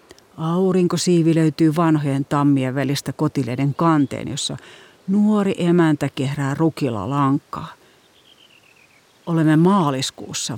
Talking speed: 85 wpm